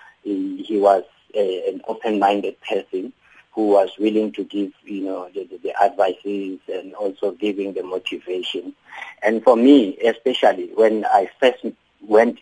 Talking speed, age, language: 150 wpm, 50-69, English